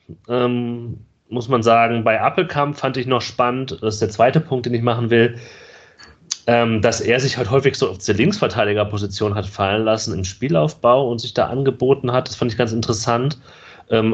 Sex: male